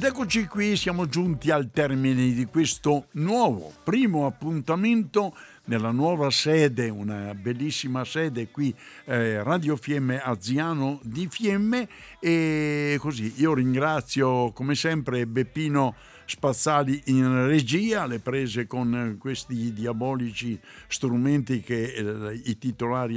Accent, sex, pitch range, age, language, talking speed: native, male, 115-150 Hz, 60-79, Italian, 115 wpm